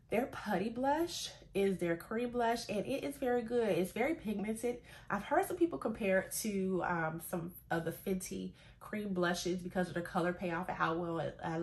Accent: American